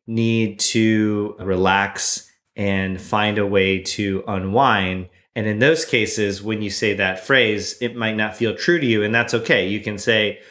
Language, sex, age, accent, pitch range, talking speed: English, male, 30-49, American, 100-120 Hz, 175 wpm